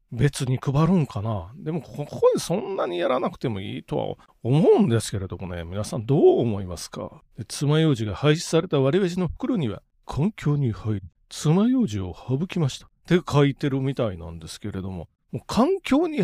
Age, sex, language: 40-59, male, Japanese